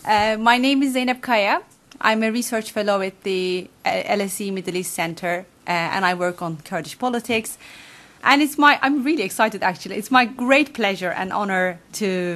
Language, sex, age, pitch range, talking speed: English, female, 30-49, 185-235 Hz, 185 wpm